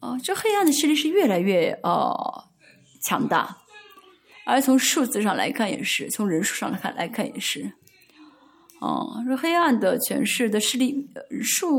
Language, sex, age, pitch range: Chinese, female, 30-49, 215-315 Hz